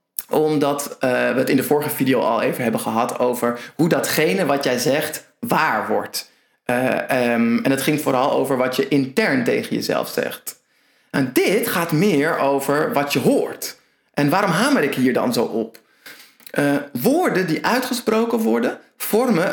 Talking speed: 170 wpm